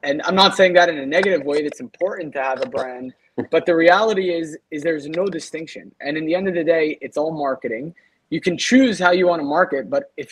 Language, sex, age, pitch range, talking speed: English, male, 20-39, 155-200 Hz, 250 wpm